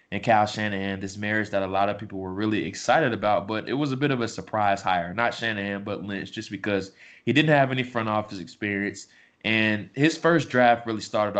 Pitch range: 100-110 Hz